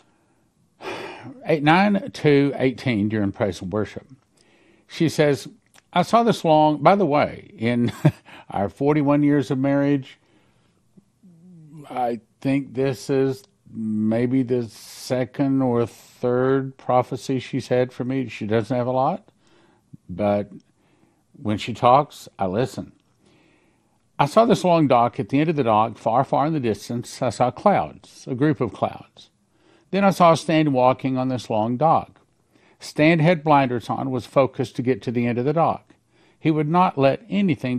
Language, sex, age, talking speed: English, male, 50-69, 155 wpm